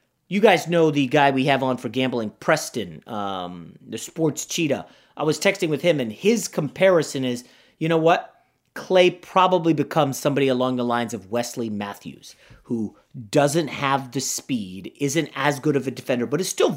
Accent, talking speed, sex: American, 185 wpm, male